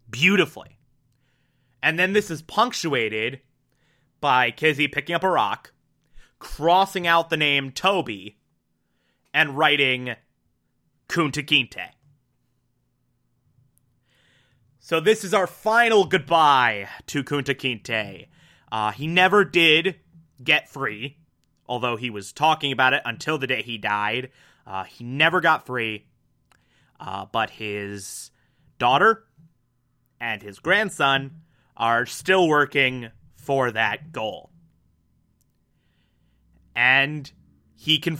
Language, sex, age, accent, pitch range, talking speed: English, male, 30-49, American, 120-160 Hz, 105 wpm